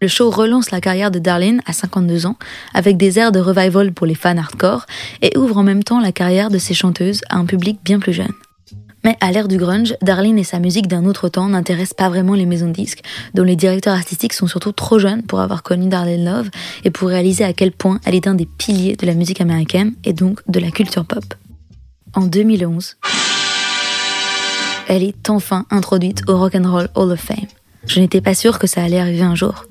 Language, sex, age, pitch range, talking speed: French, female, 20-39, 175-205 Hz, 230 wpm